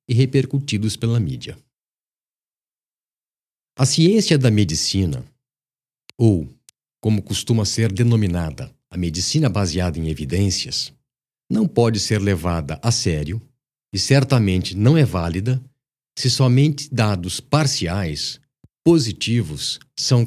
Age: 50-69